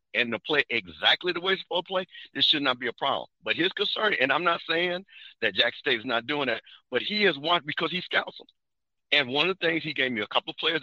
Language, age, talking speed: English, 50-69, 285 wpm